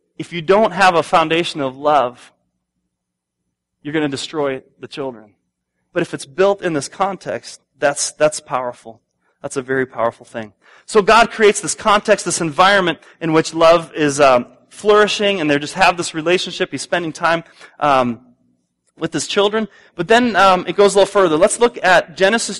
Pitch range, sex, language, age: 125-190 Hz, male, English, 30-49